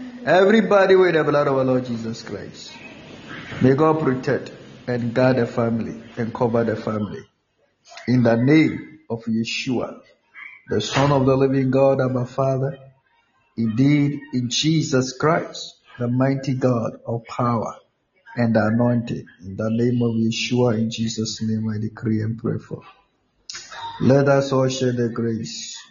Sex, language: male, Japanese